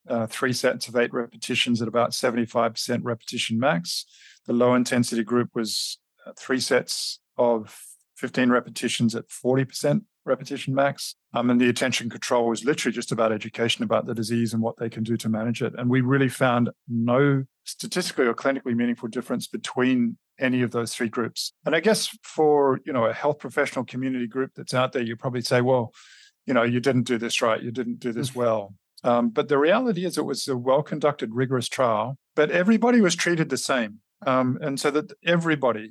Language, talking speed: English, 190 wpm